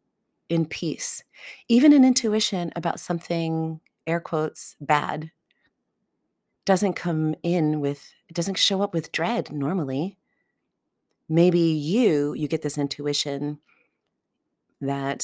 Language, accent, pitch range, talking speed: English, American, 145-185 Hz, 110 wpm